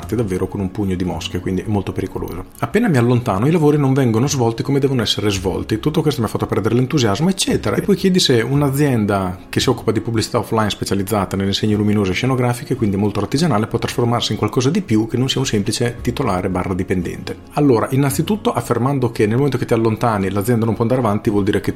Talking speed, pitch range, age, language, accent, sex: 215 wpm, 100-120 Hz, 40-59, Italian, native, male